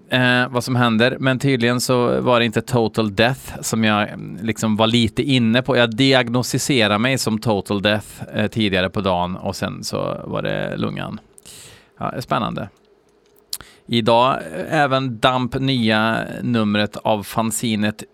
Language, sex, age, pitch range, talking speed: Swedish, male, 30-49, 105-130 Hz, 145 wpm